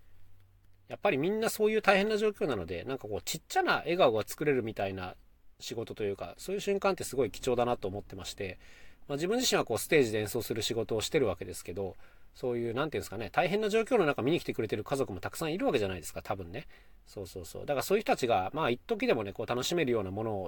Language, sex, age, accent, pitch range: Japanese, male, 40-59, native, 95-155 Hz